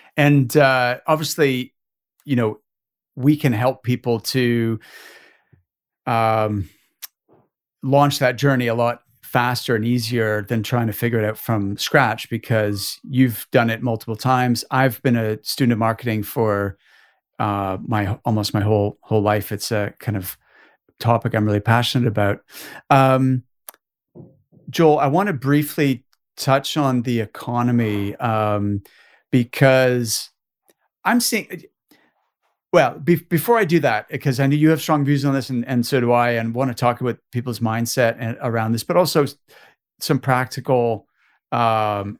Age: 40-59